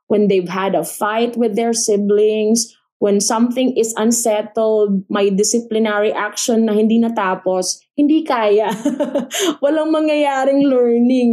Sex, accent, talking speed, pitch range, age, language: female, Filipino, 120 wpm, 200-245 Hz, 20-39, English